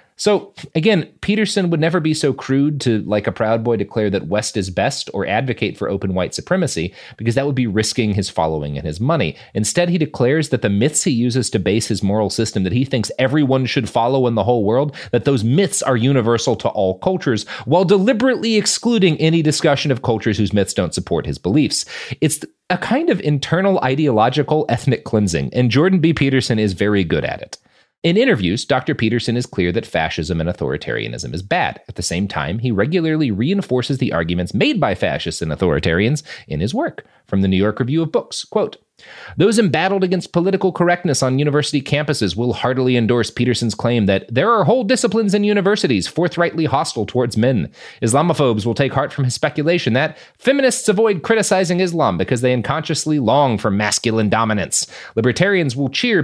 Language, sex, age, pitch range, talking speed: English, male, 30-49, 110-165 Hz, 190 wpm